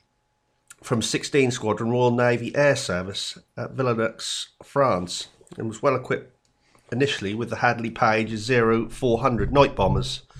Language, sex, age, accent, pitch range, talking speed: English, male, 40-59, British, 115-130 Hz, 120 wpm